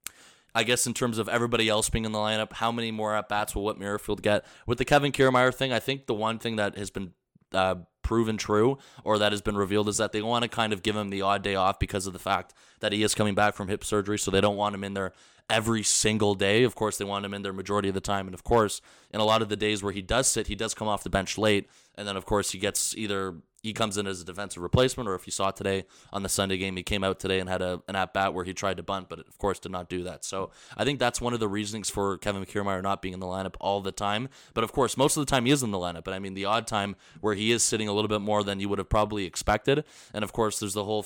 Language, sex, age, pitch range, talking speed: English, male, 20-39, 100-110 Hz, 305 wpm